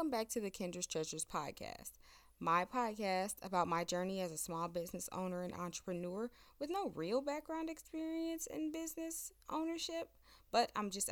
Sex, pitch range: female, 175-230 Hz